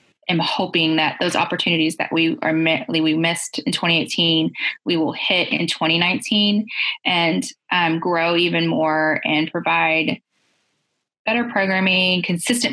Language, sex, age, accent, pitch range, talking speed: English, female, 10-29, American, 165-185 Hz, 125 wpm